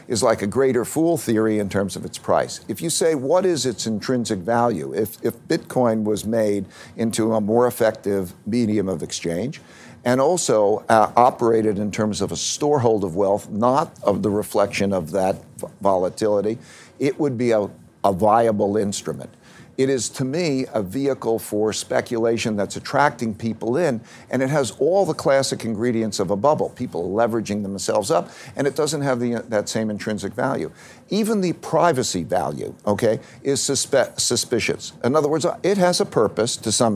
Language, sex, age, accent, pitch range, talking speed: English, male, 50-69, American, 110-135 Hz, 175 wpm